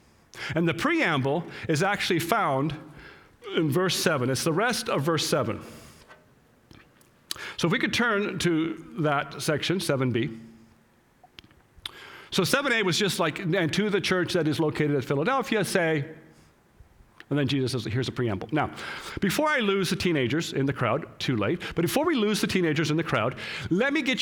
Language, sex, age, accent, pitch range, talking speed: English, male, 40-59, American, 155-210 Hz, 170 wpm